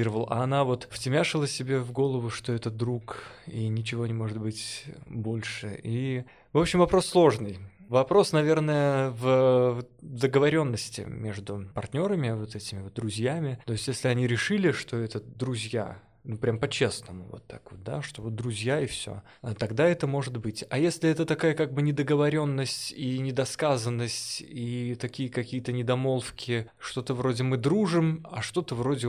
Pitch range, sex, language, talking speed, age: 115-140 Hz, male, Russian, 155 wpm, 20-39